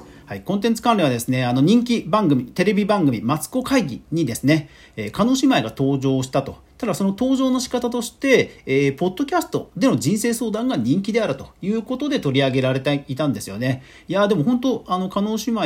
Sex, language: male, Japanese